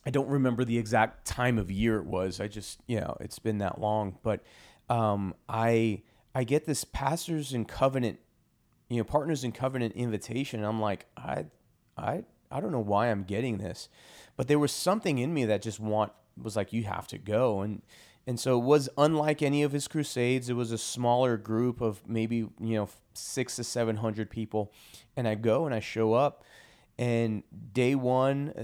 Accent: American